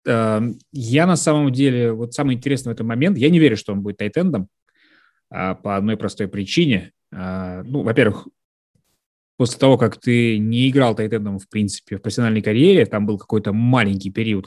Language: Russian